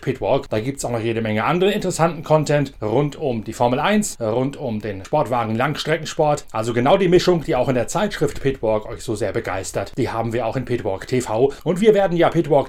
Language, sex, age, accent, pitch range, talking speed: German, male, 30-49, German, 115-150 Hz, 220 wpm